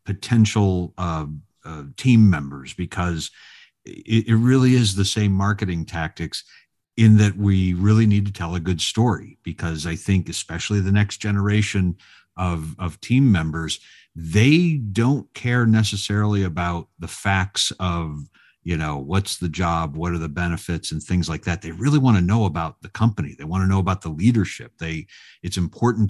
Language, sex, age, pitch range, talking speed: English, male, 50-69, 85-105 Hz, 170 wpm